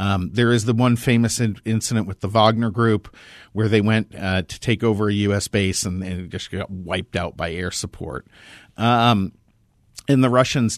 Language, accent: English, American